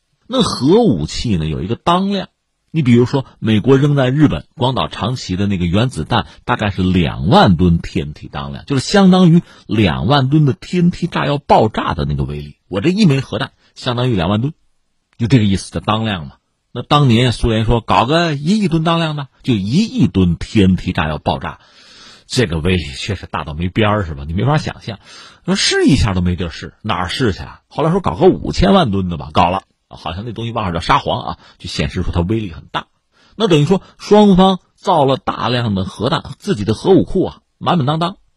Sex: male